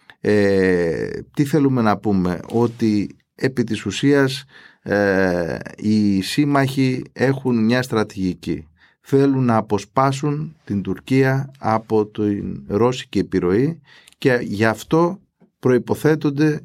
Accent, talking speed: native, 95 wpm